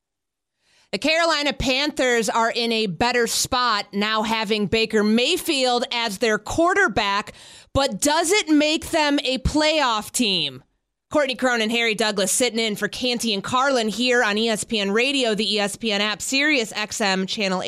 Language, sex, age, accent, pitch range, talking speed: English, female, 30-49, American, 195-255 Hz, 145 wpm